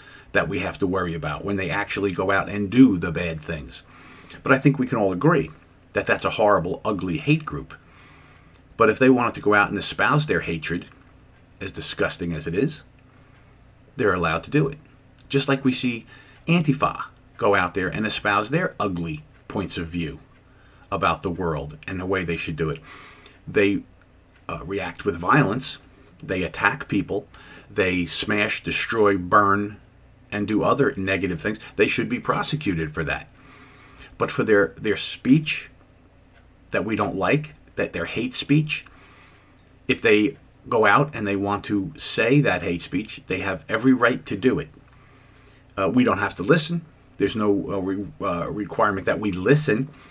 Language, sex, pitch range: English, male, 100-135 Hz